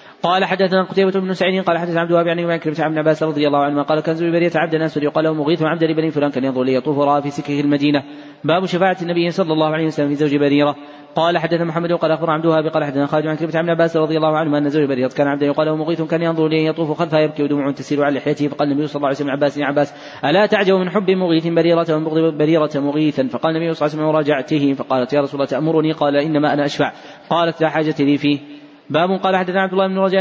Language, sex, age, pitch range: Arabic, male, 20-39, 145-170 Hz